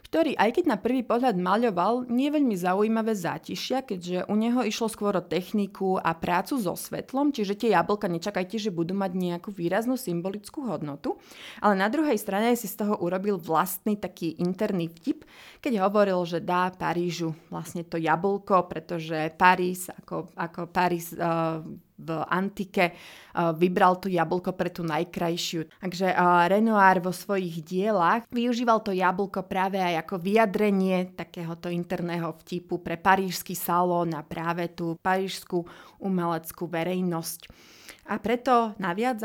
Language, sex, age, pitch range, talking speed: Slovak, female, 30-49, 170-205 Hz, 145 wpm